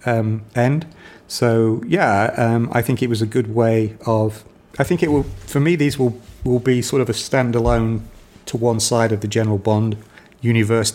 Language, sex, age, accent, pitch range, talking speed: English, male, 40-59, British, 105-120 Hz, 190 wpm